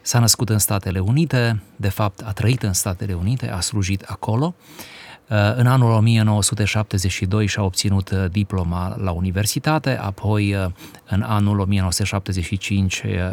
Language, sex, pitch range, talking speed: Romanian, male, 95-115 Hz, 120 wpm